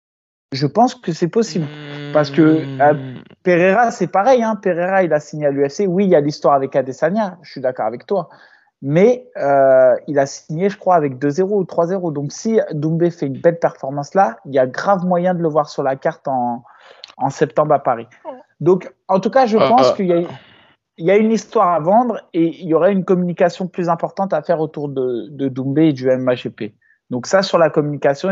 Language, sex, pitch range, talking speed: French, male, 140-190 Hz, 210 wpm